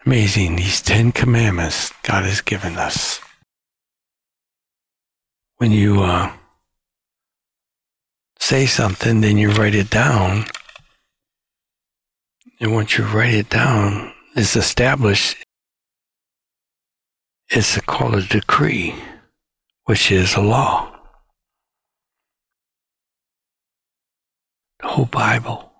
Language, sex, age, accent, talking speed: English, male, 60-79, American, 85 wpm